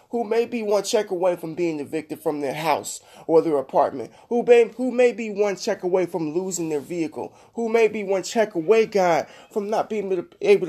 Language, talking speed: English, 215 wpm